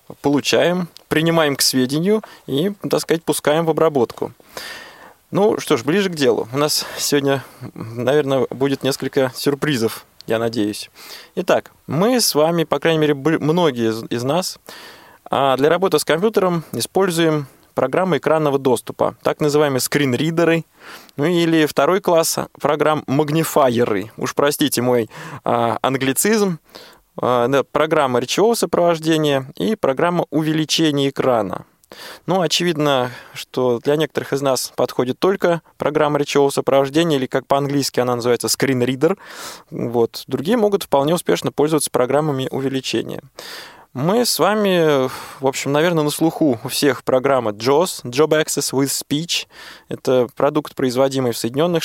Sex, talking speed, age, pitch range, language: male, 130 wpm, 20-39, 130-160 Hz, Russian